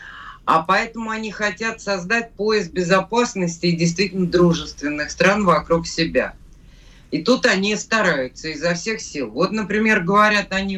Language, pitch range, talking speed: Russian, 160-210 Hz, 135 wpm